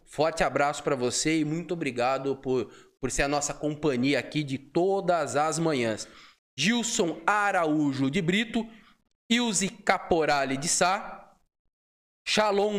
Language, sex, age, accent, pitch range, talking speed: Portuguese, male, 20-39, Brazilian, 135-195 Hz, 125 wpm